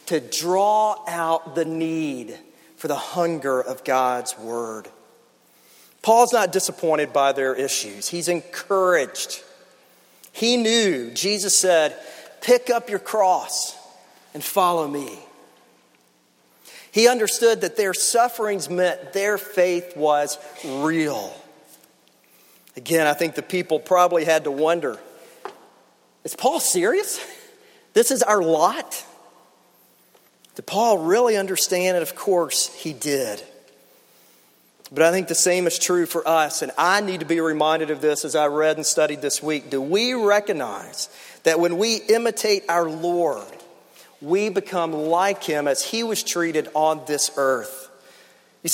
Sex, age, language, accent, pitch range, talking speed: male, 40-59, English, American, 150-200 Hz, 135 wpm